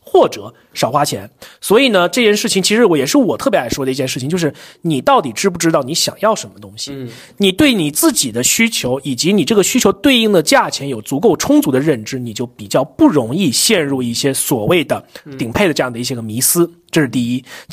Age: 30-49